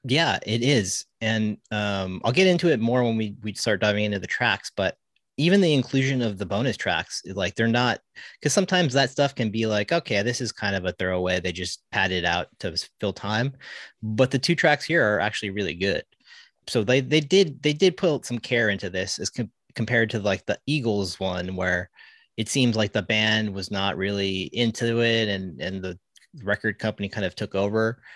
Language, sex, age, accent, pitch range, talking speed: English, male, 30-49, American, 100-120 Hz, 210 wpm